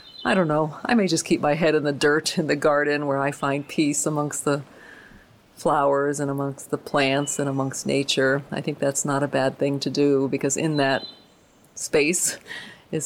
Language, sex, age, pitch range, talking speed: English, female, 40-59, 145-185 Hz, 200 wpm